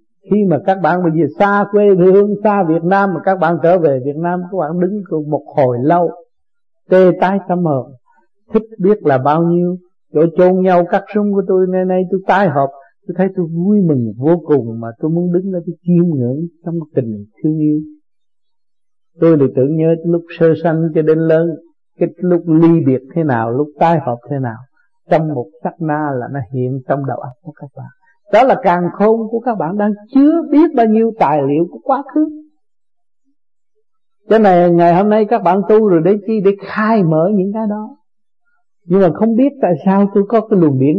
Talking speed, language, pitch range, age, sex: 210 wpm, Vietnamese, 150-205 Hz, 60-79, male